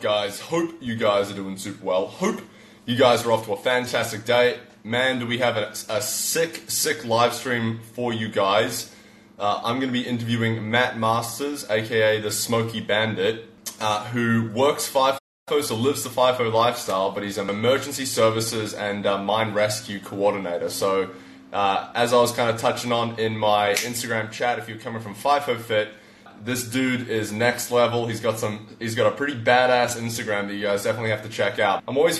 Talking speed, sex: 195 wpm, male